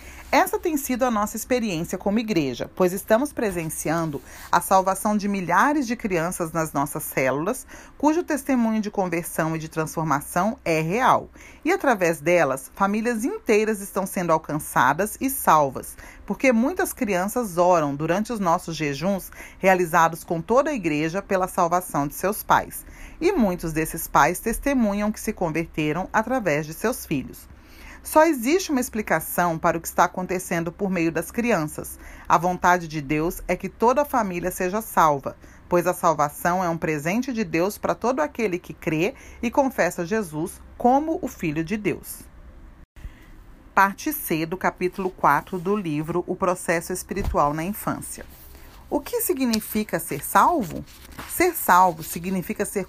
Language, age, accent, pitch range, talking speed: Portuguese, 40-59, Brazilian, 165-220 Hz, 155 wpm